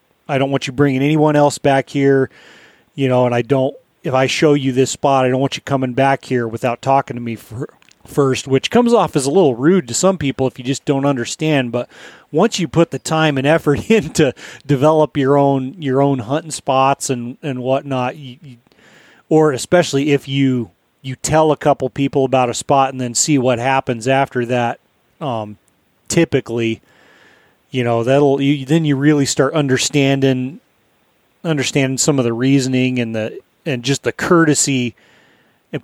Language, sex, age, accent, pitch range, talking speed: English, male, 30-49, American, 130-150 Hz, 180 wpm